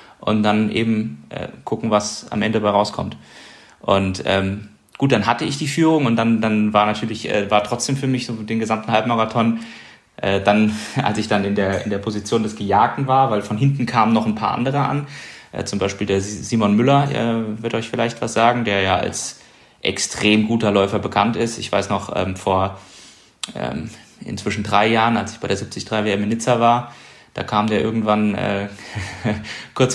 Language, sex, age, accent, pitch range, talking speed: German, male, 30-49, German, 100-115 Hz, 195 wpm